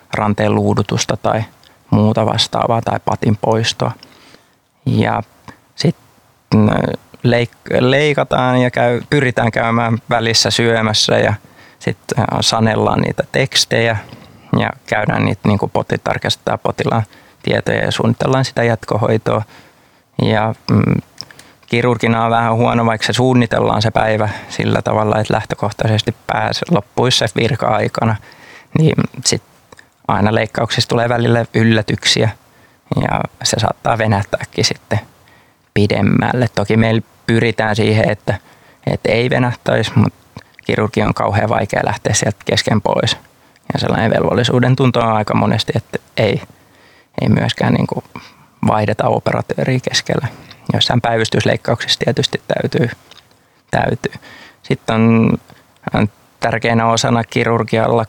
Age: 20-39